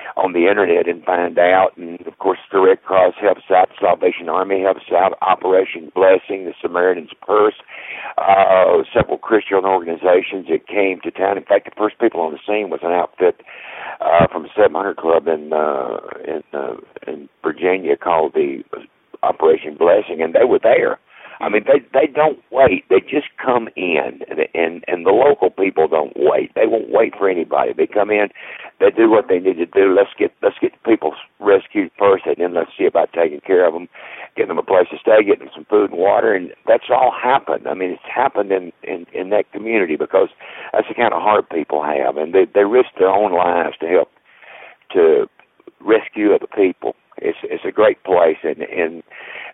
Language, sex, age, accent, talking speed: English, male, 60-79, American, 200 wpm